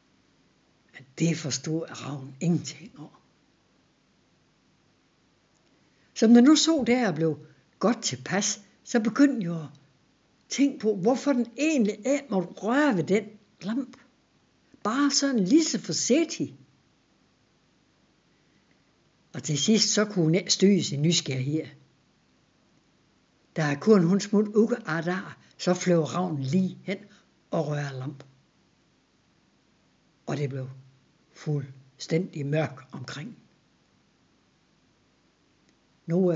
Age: 60-79